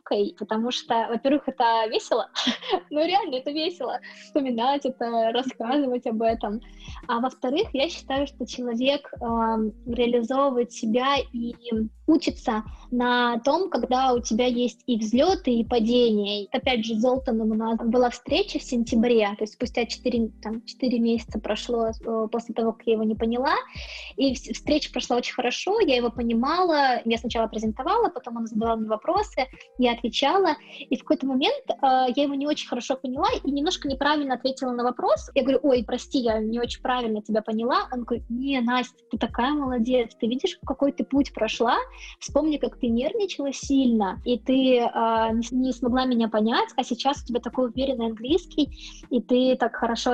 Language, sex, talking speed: Russian, female, 245 wpm